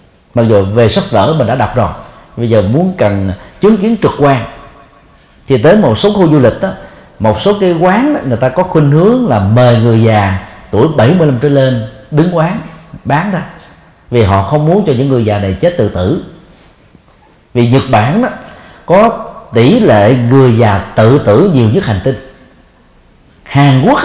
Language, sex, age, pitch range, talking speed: Vietnamese, male, 40-59, 110-160 Hz, 185 wpm